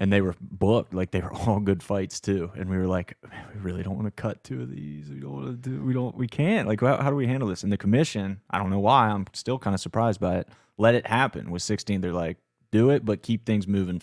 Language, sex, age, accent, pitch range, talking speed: English, male, 30-49, American, 90-110 Hz, 285 wpm